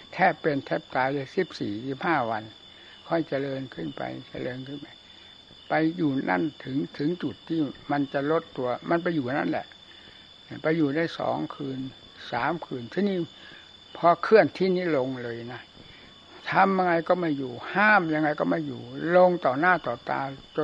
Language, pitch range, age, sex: Thai, 130-160 Hz, 60-79, male